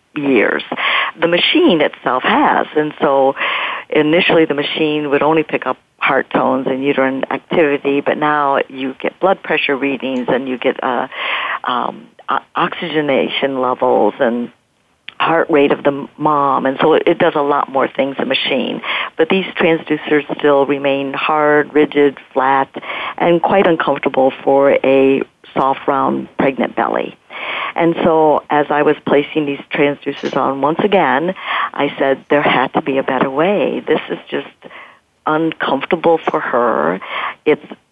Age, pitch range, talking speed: 60-79, 135-160 Hz, 150 wpm